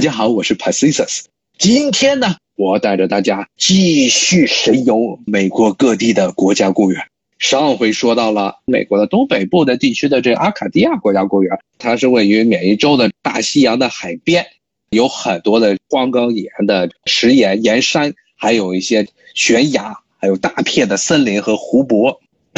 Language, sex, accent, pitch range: Chinese, male, native, 110-180 Hz